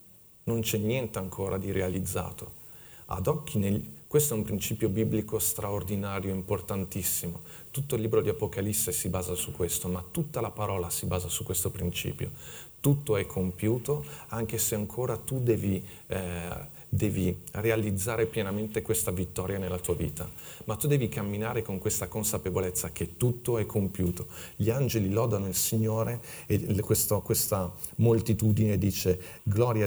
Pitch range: 95-115 Hz